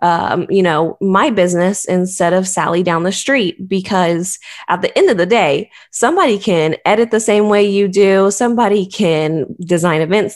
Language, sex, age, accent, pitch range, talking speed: English, female, 20-39, American, 160-190 Hz, 175 wpm